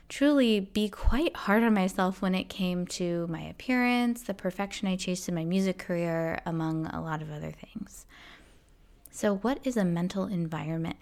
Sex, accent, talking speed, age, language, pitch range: female, American, 175 wpm, 20-39, English, 170-225 Hz